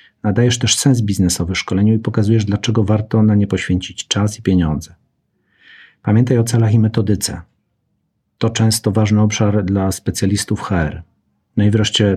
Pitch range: 95-110 Hz